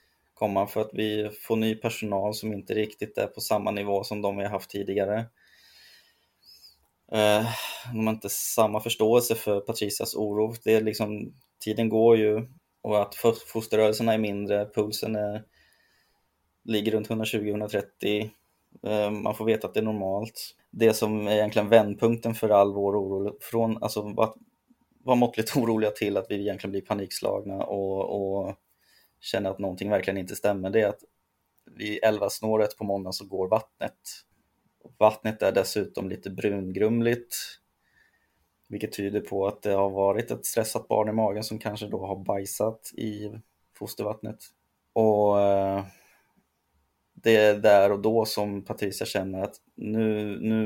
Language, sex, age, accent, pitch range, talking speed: Swedish, male, 20-39, native, 100-110 Hz, 150 wpm